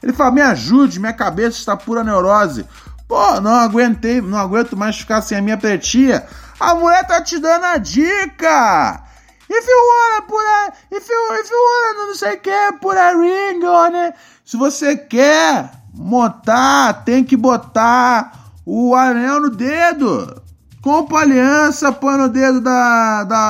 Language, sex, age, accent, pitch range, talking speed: Portuguese, male, 20-39, Brazilian, 215-295 Hz, 140 wpm